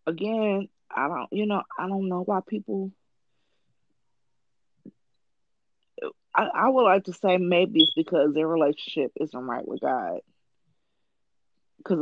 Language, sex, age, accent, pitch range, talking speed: English, female, 20-39, American, 150-190 Hz, 130 wpm